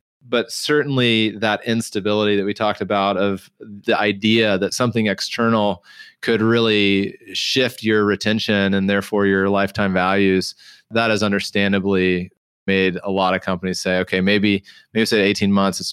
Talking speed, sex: 150 wpm, male